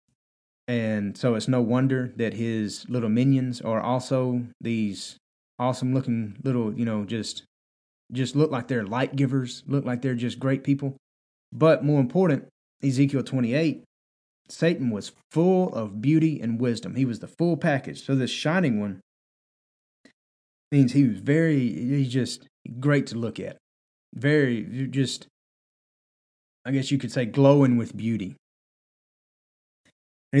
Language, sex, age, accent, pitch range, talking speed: English, male, 30-49, American, 115-145 Hz, 140 wpm